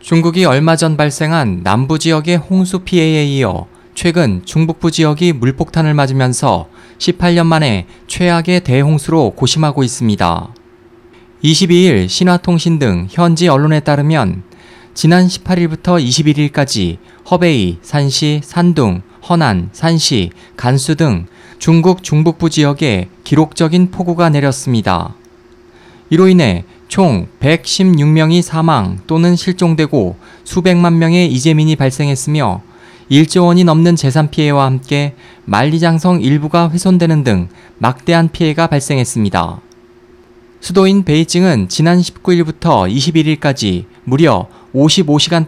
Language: Korean